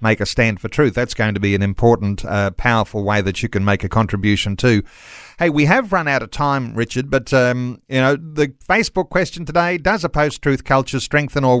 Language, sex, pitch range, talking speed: English, male, 115-150 Hz, 220 wpm